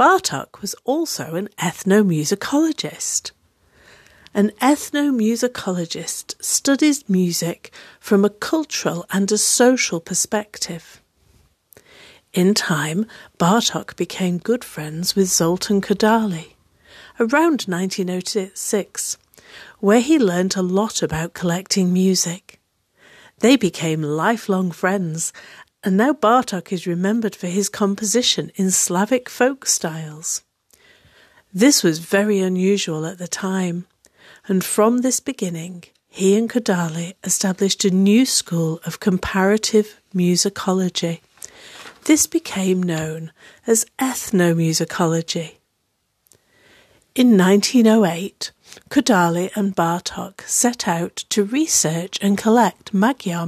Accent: British